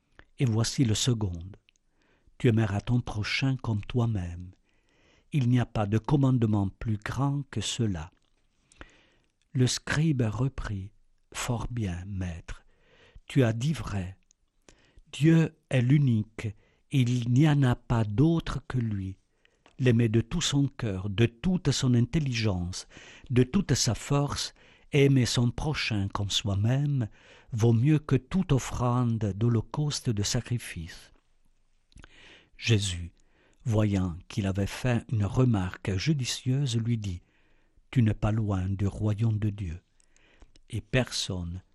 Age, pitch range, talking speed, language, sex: 60-79, 100-125 Hz, 130 wpm, French, male